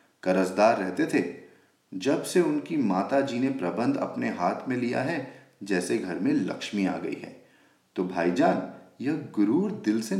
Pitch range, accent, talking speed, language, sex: 95-150 Hz, Indian, 160 wpm, English, male